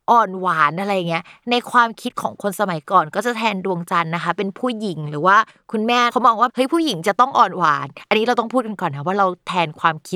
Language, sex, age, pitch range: Thai, female, 20-39, 180-245 Hz